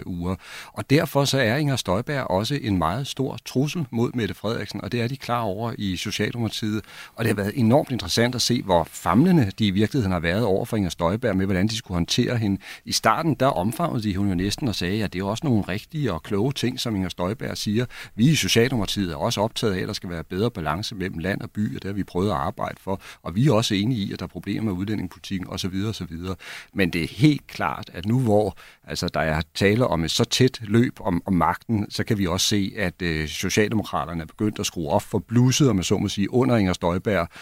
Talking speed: 245 wpm